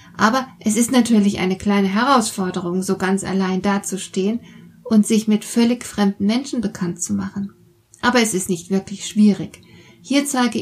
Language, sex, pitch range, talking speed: German, female, 190-230 Hz, 160 wpm